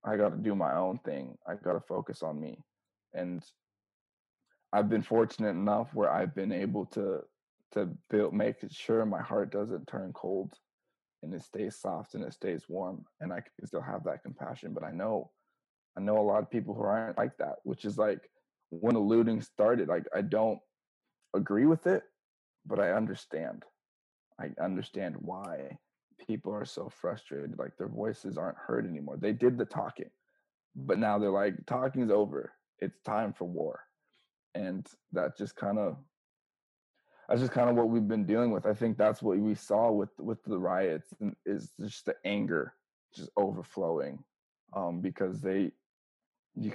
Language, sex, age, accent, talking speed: English, male, 20-39, American, 175 wpm